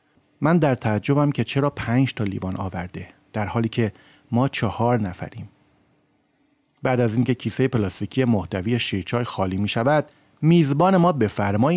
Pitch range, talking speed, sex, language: 105-145 Hz, 150 wpm, male, Persian